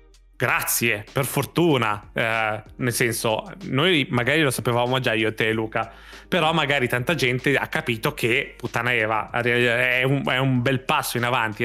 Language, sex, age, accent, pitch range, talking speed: Italian, male, 20-39, native, 115-140 Hz, 165 wpm